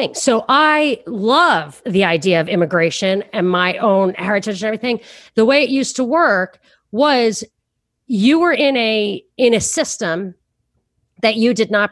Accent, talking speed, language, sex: American, 150 wpm, English, female